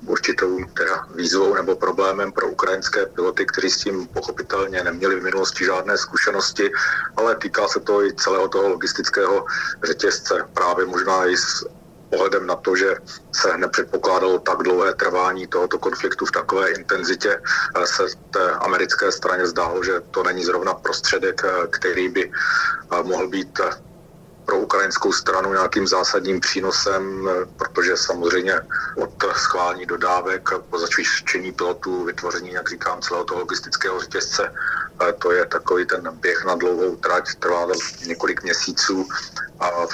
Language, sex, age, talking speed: Slovak, male, 40-59, 135 wpm